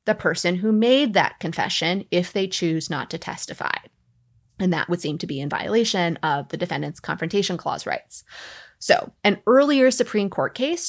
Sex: female